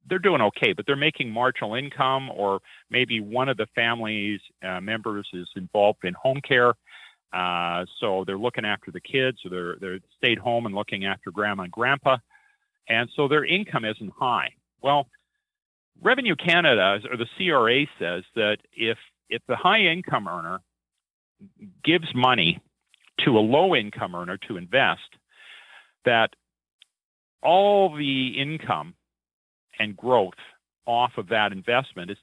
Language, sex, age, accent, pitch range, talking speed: English, male, 40-59, American, 100-150 Hz, 145 wpm